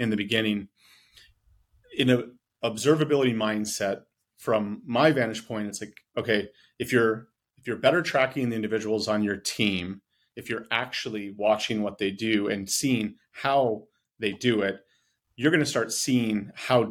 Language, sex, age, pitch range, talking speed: English, male, 30-49, 105-125 Hz, 155 wpm